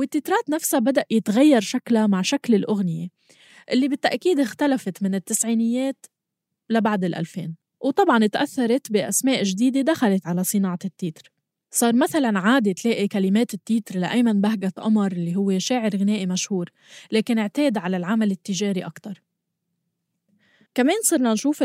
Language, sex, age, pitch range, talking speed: Arabic, female, 20-39, 195-265 Hz, 130 wpm